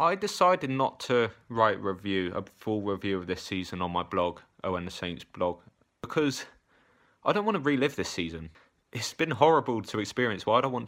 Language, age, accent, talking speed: English, 20-39, British, 210 wpm